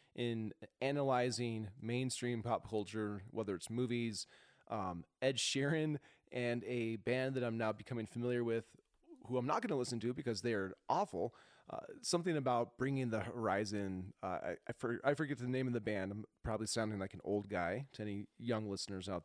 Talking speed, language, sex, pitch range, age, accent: 180 wpm, English, male, 105-130 Hz, 30-49, American